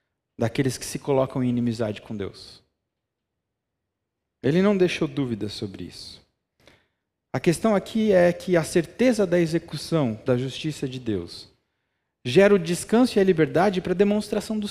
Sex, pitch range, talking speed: male, 125-180 Hz, 150 wpm